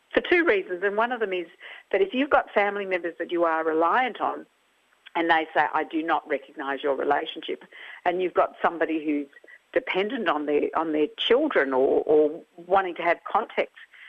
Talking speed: 190 wpm